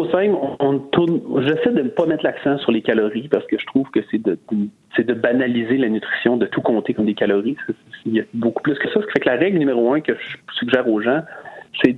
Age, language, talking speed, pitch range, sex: 40-59, French, 270 wpm, 115-170 Hz, male